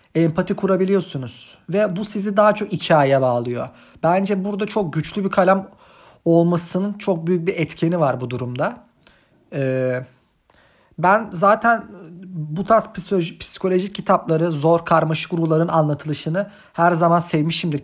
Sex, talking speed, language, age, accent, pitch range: male, 125 wpm, Turkish, 40-59, native, 150-185 Hz